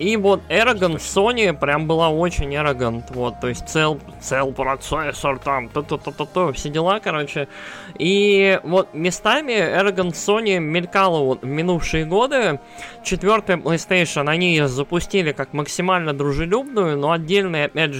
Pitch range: 145-195 Hz